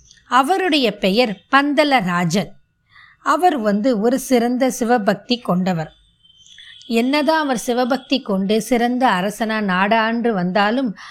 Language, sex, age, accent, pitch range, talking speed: Tamil, female, 20-39, native, 205-270 Hz, 90 wpm